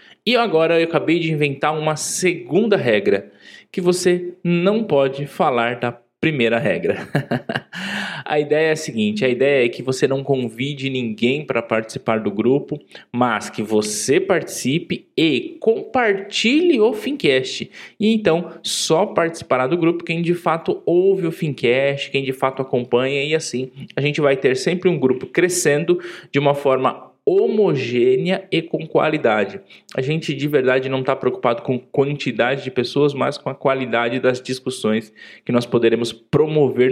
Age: 20-39